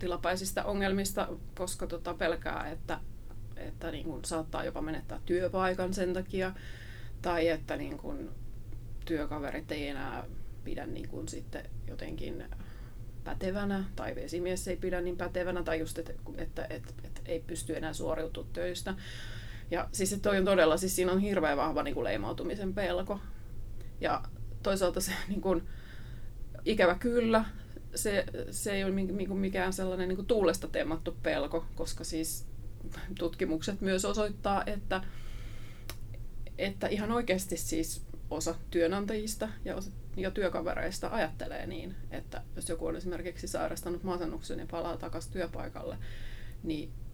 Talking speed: 125 wpm